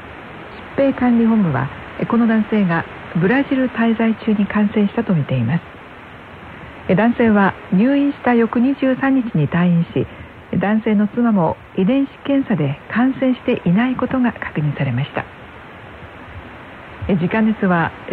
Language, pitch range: Korean, 170-245 Hz